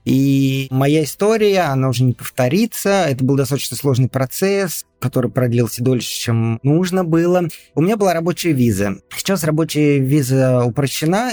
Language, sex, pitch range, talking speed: Russian, male, 125-155 Hz, 145 wpm